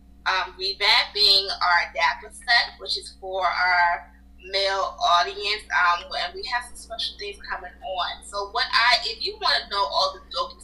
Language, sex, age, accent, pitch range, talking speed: English, female, 20-39, American, 190-245 Hz, 175 wpm